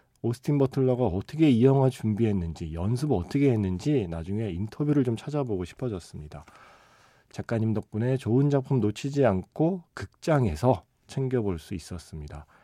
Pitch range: 95-135 Hz